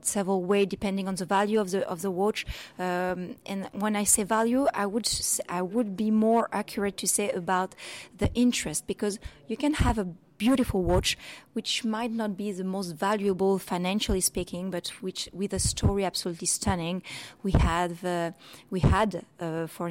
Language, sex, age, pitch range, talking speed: Swedish, female, 30-49, 180-215 Hz, 180 wpm